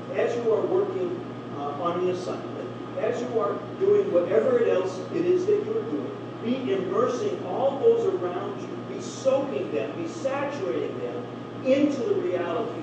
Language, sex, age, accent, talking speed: English, male, 50-69, American, 165 wpm